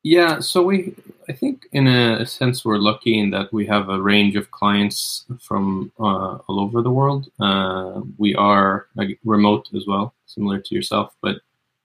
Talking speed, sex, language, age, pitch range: 170 wpm, male, English, 20-39, 95-115 Hz